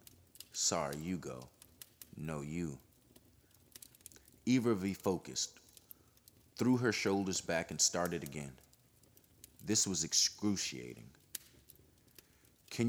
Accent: American